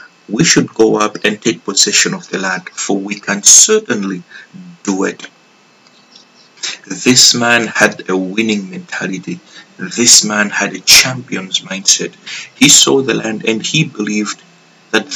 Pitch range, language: 100-130 Hz, English